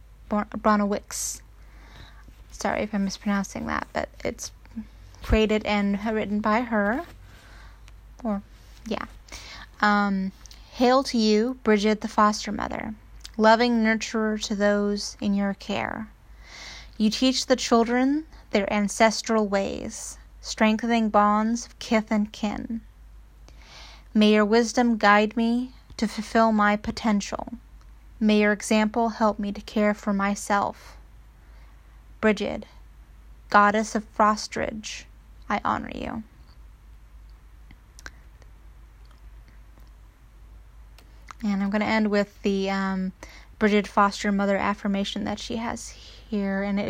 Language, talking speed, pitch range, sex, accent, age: English, 110 wpm, 195-225 Hz, female, American, 10-29